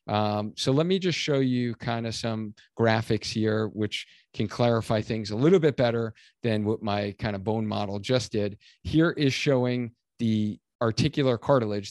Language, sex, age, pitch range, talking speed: English, male, 40-59, 110-140 Hz, 175 wpm